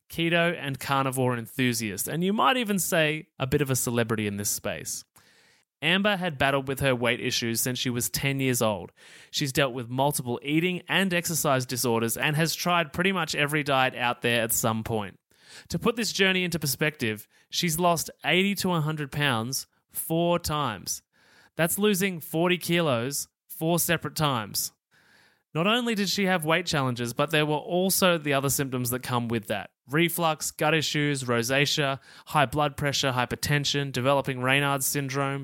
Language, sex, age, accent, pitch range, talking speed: English, male, 20-39, Australian, 125-170 Hz, 170 wpm